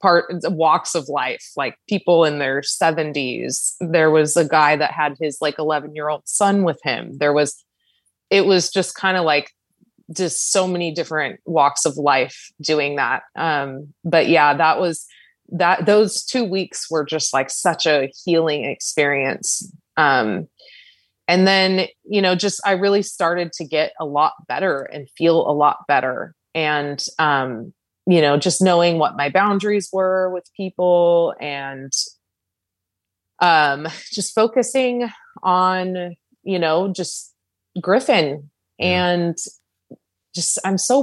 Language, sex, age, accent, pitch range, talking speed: English, female, 20-39, American, 150-190 Hz, 150 wpm